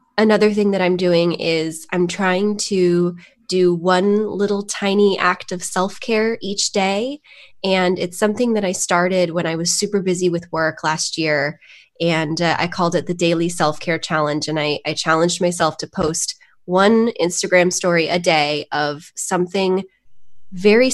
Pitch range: 165-205 Hz